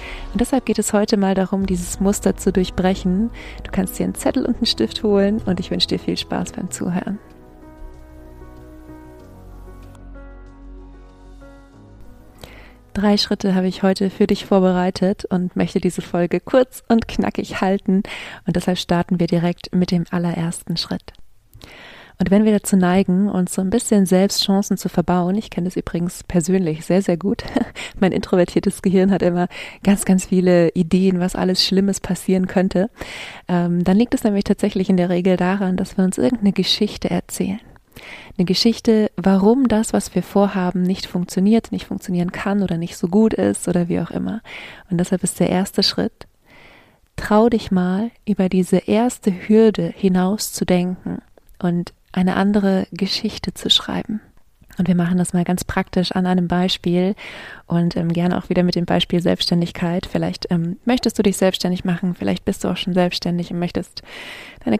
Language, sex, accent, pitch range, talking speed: German, female, German, 175-200 Hz, 170 wpm